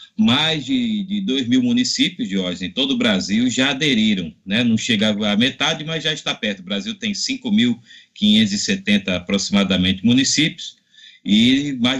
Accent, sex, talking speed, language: Brazilian, male, 155 wpm, Portuguese